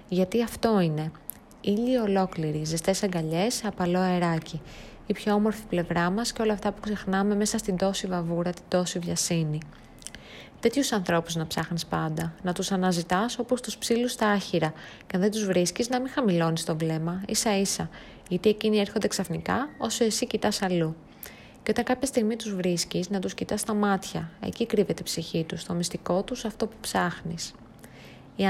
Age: 20-39